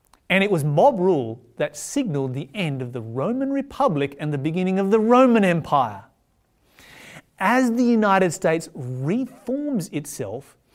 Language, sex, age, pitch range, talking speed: English, male, 30-49, 135-200 Hz, 145 wpm